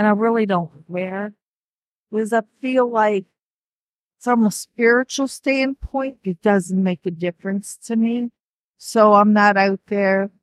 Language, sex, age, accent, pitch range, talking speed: English, female, 50-69, American, 185-225 Hz, 145 wpm